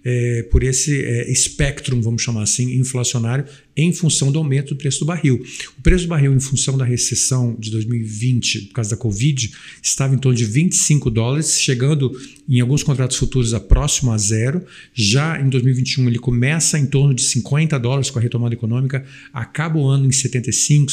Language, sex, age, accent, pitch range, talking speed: Portuguese, male, 50-69, Brazilian, 125-150 Hz, 185 wpm